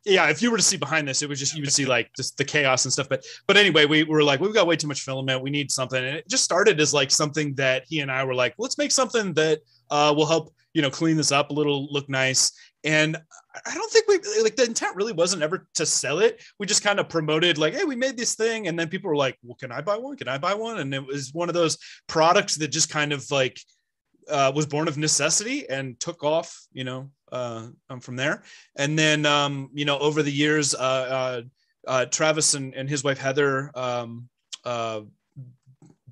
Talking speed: 245 wpm